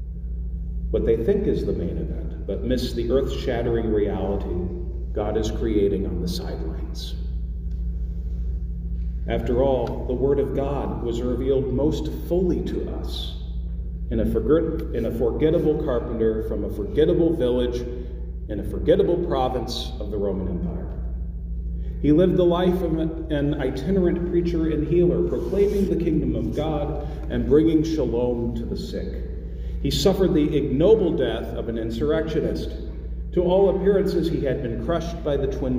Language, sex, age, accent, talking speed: English, male, 40-59, American, 145 wpm